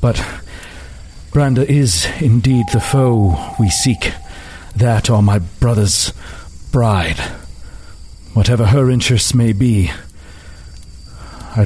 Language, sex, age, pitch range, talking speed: English, male, 50-69, 85-125 Hz, 100 wpm